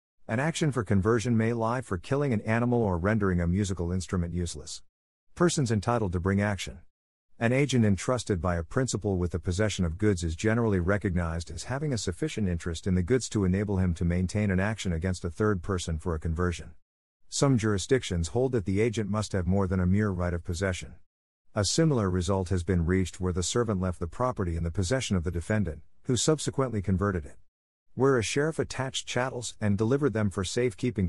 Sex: male